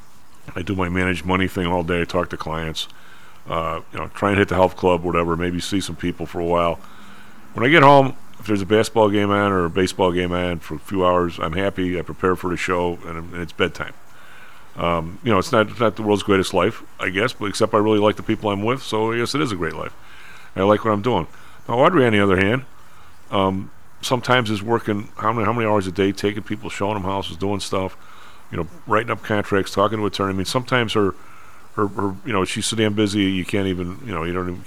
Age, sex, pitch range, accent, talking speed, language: 40-59, male, 95-115 Hz, American, 255 wpm, English